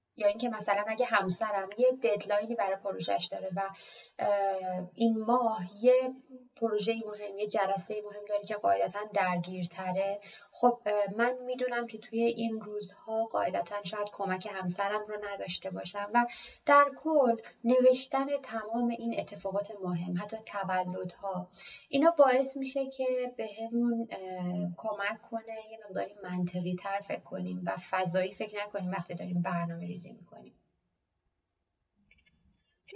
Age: 30-49